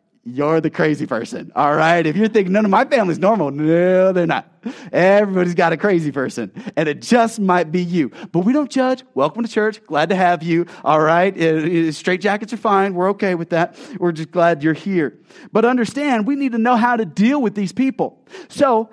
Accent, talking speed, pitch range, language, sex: American, 210 wpm, 165-230 Hz, English, male